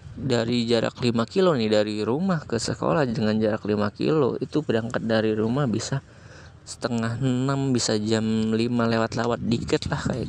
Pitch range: 110-130 Hz